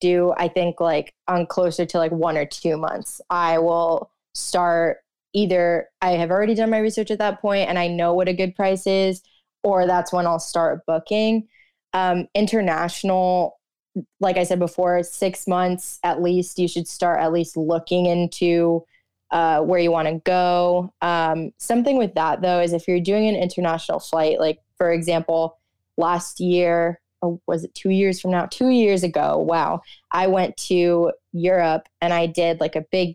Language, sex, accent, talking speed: English, female, American, 175 wpm